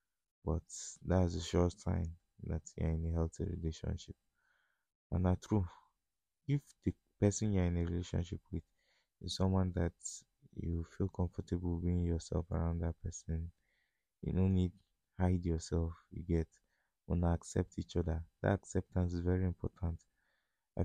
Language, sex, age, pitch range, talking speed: English, male, 20-39, 85-95 Hz, 155 wpm